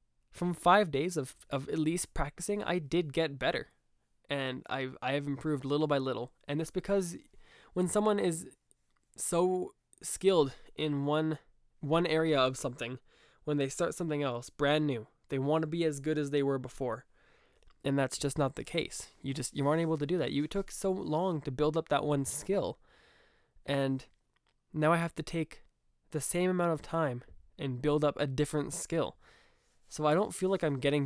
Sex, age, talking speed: male, 20-39, 190 wpm